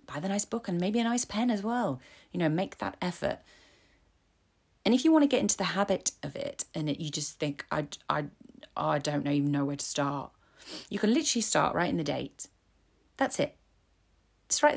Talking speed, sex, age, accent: 205 wpm, female, 30-49, British